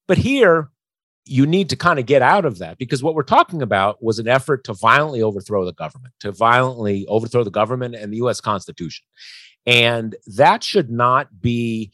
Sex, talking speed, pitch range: male, 190 wpm, 110-150 Hz